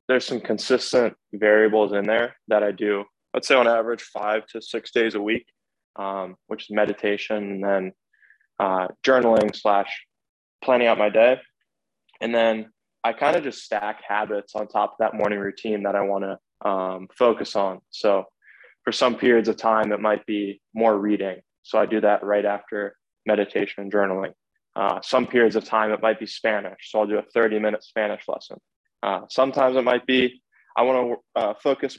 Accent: American